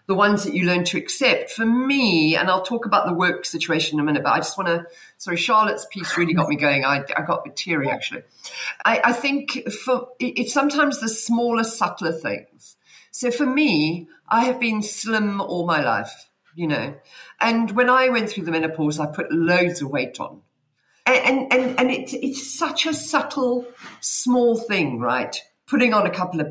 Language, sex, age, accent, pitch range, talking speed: English, female, 50-69, British, 165-240 Hz, 205 wpm